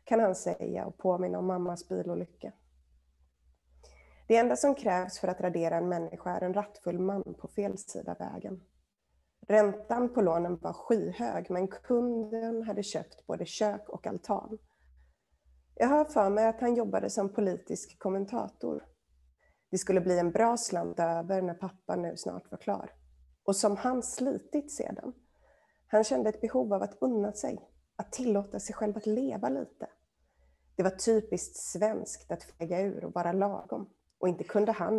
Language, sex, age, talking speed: Swedish, female, 30-49, 165 wpm